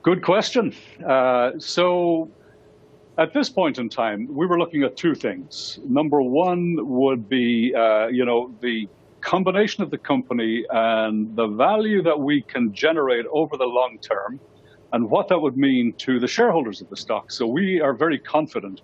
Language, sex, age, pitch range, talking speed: English, male, 60-79, 110-150 Hz, 170 wpm